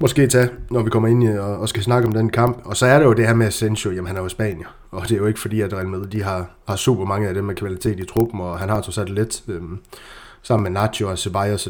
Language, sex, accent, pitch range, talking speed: Danish, male, native, 105-130 Hz, 295 wpm